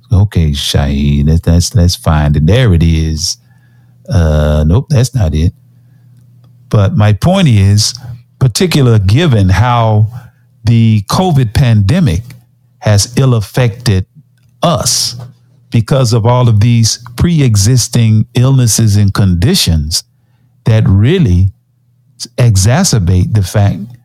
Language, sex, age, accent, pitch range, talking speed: English, male, 50-69, American, 100-125 Hz, 100 wpm